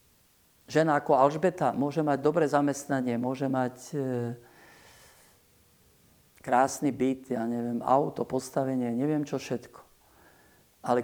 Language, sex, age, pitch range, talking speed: Slovak, male, 50-69, 130-160 Hz, 110 wpm